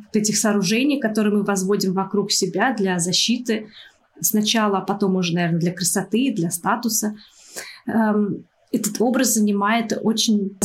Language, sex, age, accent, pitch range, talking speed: Russian, female, 20-39, native, 195-225 Hz, 125 wpm